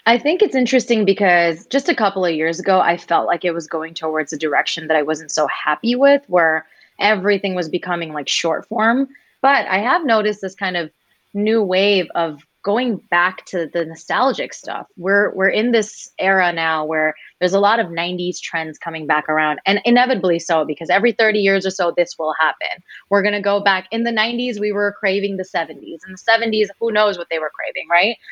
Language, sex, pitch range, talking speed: English, female, 170-220 Hz, 210 wpm